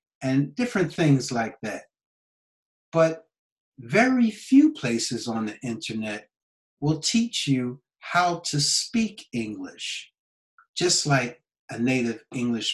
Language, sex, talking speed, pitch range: English, male, 115 wpm, 130-180 Hz